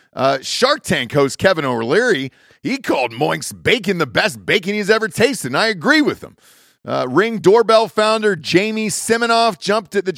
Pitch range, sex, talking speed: 140-215 Hz, male, 175 wpm